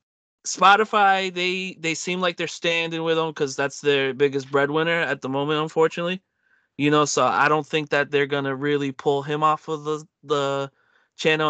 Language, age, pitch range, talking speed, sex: English, 20-39, 140-175 Hz, 185 wpm, male